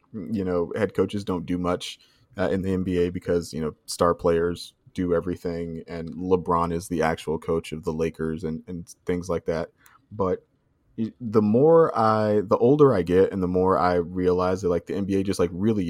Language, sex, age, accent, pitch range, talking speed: English, male, 20-39, American, 85-95 Hz, 195 wpm